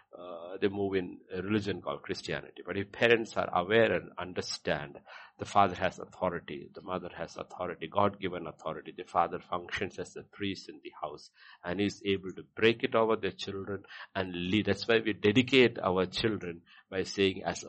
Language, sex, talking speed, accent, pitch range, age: English, male, 185 wpm, Indian, 90-105 Hz, 60-79